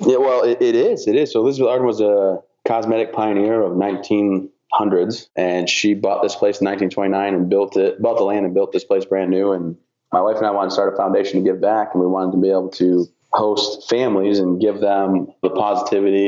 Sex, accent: male, American